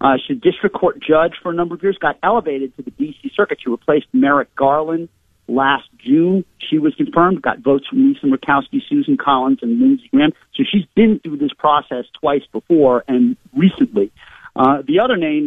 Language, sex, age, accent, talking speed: English, male, 50-69, American, 195 wpm